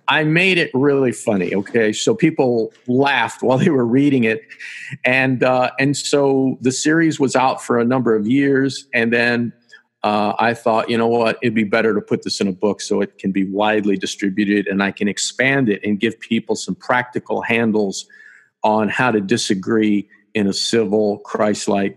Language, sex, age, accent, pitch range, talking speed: English, male, 50-69, American, 105-130 Hz, 190 wpm